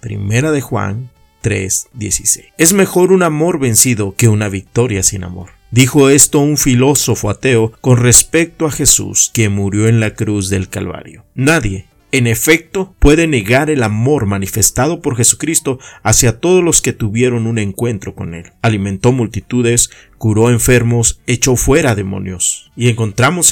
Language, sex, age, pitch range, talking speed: Spanish, male, 50-69, 105-135 Hz, 150 wpm